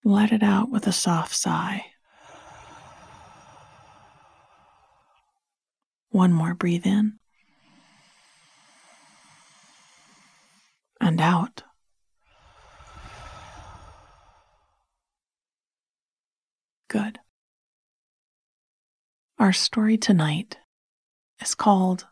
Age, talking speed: 30-49, 50 wpm